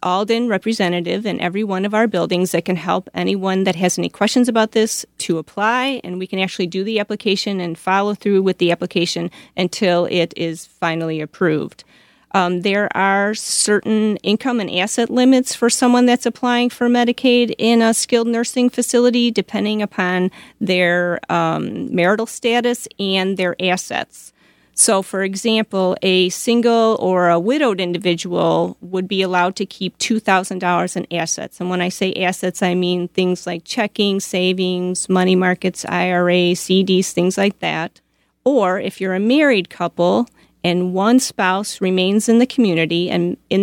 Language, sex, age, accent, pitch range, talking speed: English, female, 30-49, American, 180-220 Hz, 160 wpm